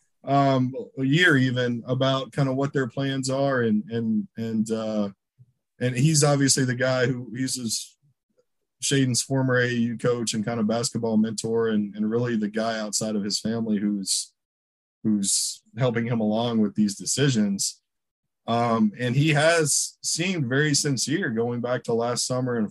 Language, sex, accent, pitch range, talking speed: English, male, American, 110-135 Hz, 160 wpm